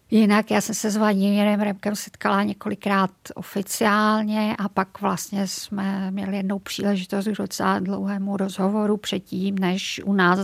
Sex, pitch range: female, 185-205 Hz